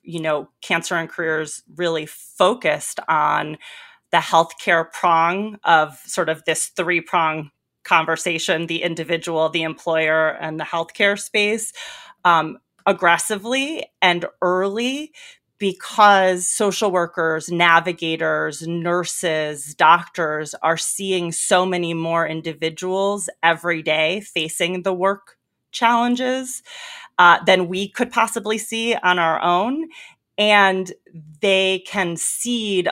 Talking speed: 110 wpm